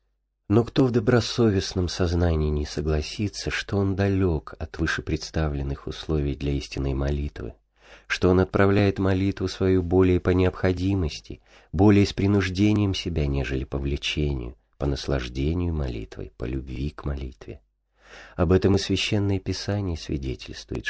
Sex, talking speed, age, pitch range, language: male, 125 wpm, 40-59, 70-95 Hz, Russian